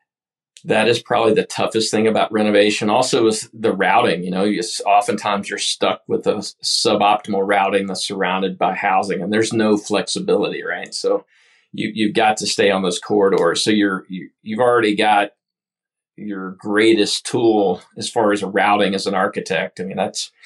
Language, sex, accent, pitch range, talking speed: English, male, American, 100-115 Hz, 175 wpm